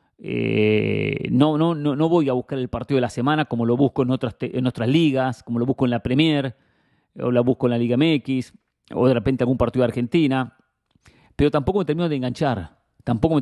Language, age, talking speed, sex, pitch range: English, 40-59, 220 wpm, male, 120-145 Hz